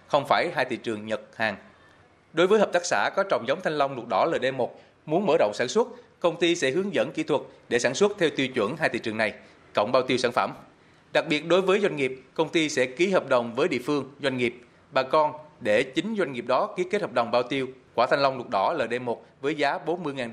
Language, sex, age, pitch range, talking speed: Vietnamese, male, 20-39, 125-165 Hz, 255 wpm